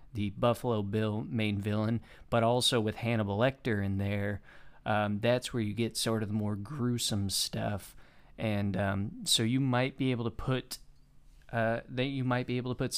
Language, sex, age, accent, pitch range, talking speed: English, male, 20-39, American, 105-125 Hz, 185 wpm